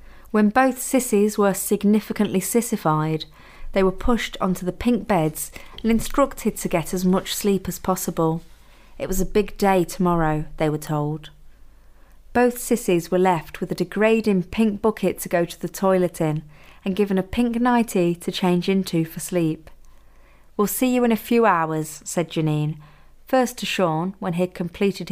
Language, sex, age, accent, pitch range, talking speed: English, female, 30-49, British, 165-210 Hz, 170 wpm